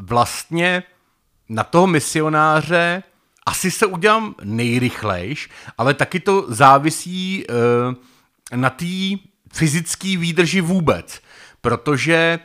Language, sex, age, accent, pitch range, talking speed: Czech, male, 40-59, native, 120-165 Hz, 85 wpm